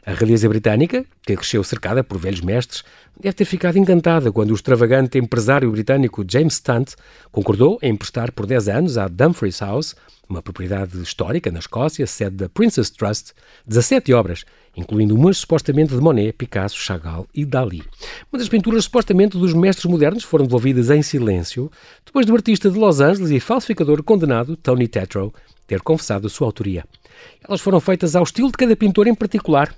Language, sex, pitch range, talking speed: Portuguese, male, 105-180 Hz, 175 wpm